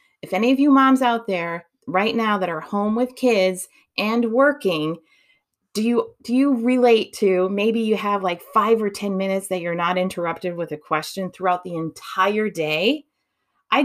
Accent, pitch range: American, 185-265 Hz